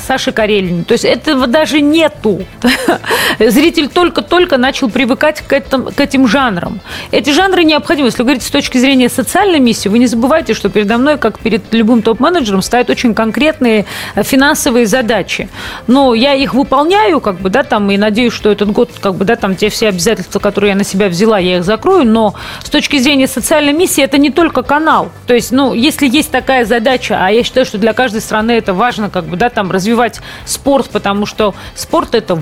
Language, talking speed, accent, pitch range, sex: Russian, 195 wpm, native, 215-280 Hz, female